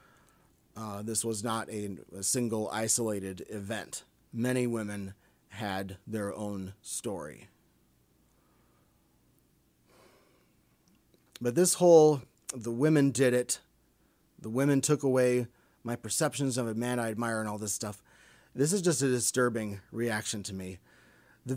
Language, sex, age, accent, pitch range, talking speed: English, male, 30-49, American, 100-125 Hz, 130 wpm